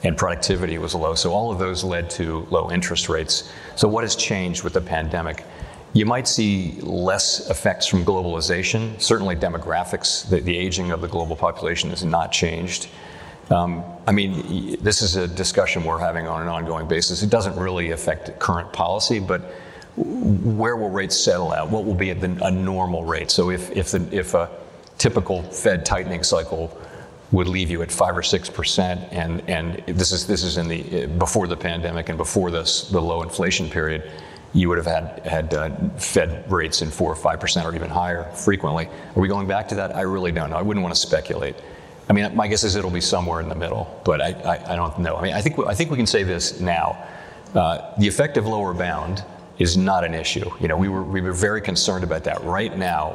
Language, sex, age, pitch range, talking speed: English, male, 40-59, 85-95 Hz, 210 wpm